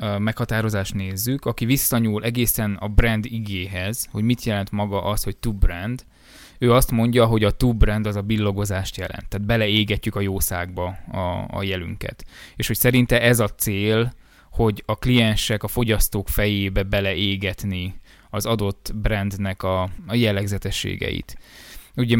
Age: 20-39